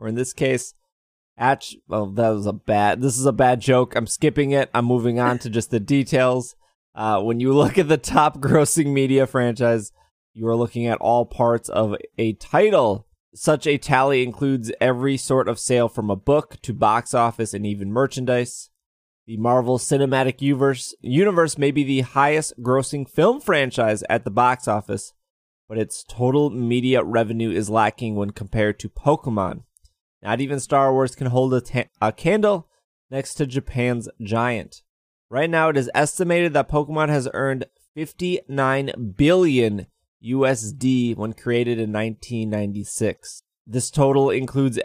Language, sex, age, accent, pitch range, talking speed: English, male, 20-39, American, 115-140 Hz, 160 wpm